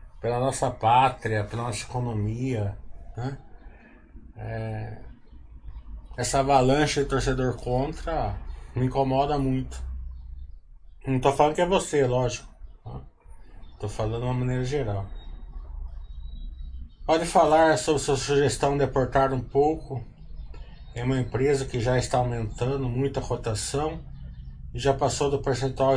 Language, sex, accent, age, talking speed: Portuguese, male, Brazilian, 20-39, 120 wpm